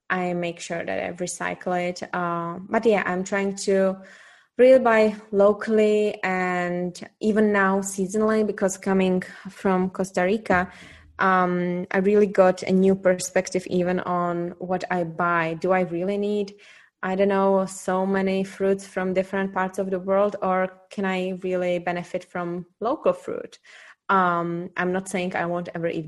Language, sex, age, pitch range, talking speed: English, female, 20-39, 180-210 Hz, 160 wpm